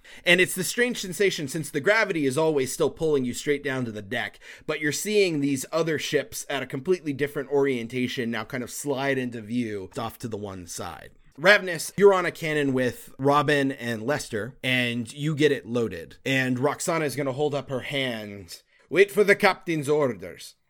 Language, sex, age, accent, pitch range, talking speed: English, male, 30-49, American, 120-155 Hz, 195 wpm